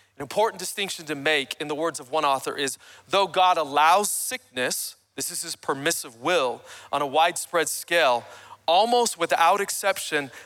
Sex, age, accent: male, 40-59, American